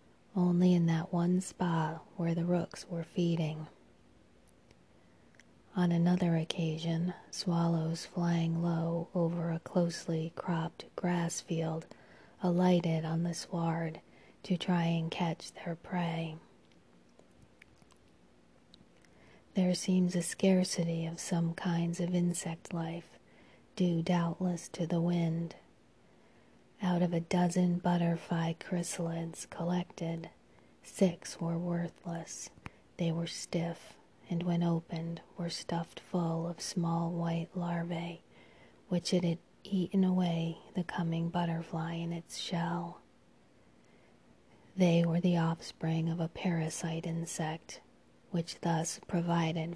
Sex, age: female, 30-49